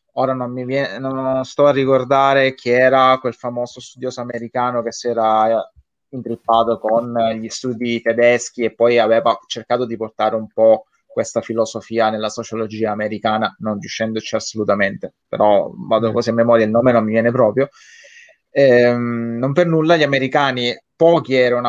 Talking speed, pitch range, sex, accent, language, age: 160 wpm, 115-135 Hz, male, native, Italian, 20-39